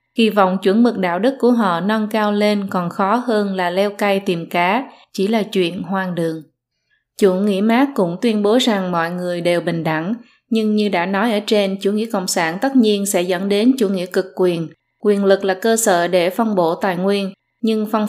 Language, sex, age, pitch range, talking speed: Vietnamese, female, 20-39, 180-215 Hz, 220 wpm